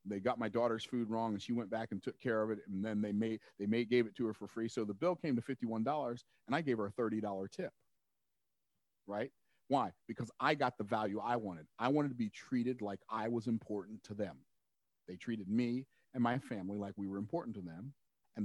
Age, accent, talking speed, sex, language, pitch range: 40-59, American, 235 wpm, male, English, 105-130 Hz